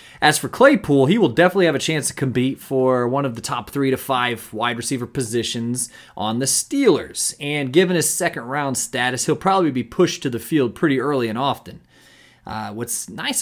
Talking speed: 195 wpm